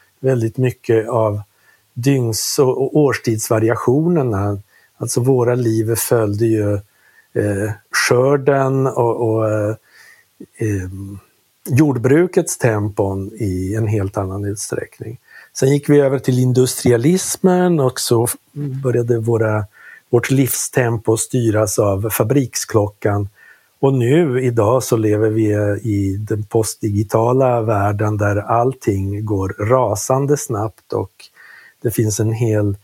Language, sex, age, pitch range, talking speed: English, male, 50-69, 105-130 Hz, 105 wpm